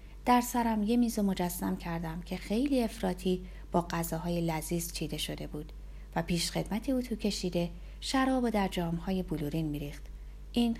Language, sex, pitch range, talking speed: Persian, female, 160-225 Hz, 155 wpm